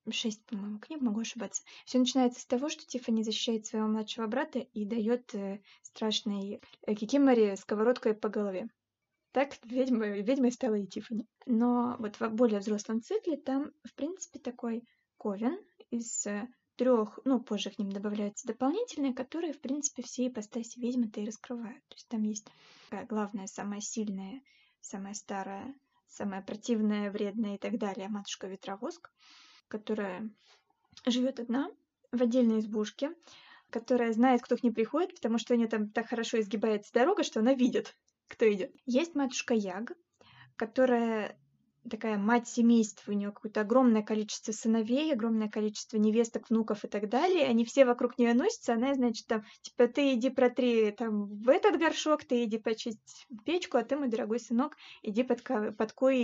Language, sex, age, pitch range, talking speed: Russian, female, 20-39, 215-255 Hz, 155 wpm